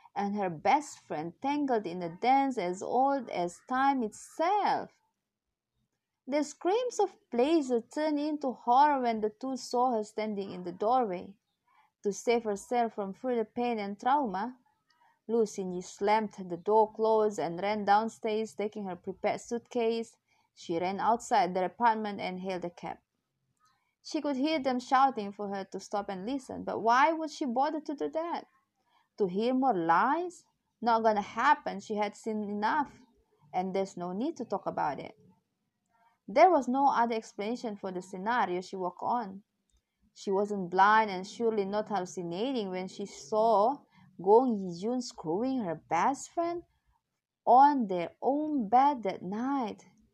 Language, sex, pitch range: Indonesian, female, 200-265 Hz